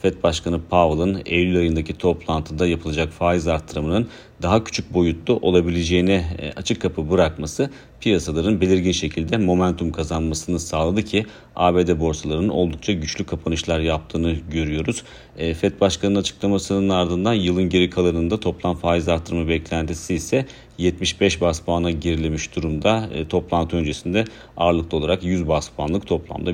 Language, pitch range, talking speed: Turkish, 80-95 Hz, 125 wpm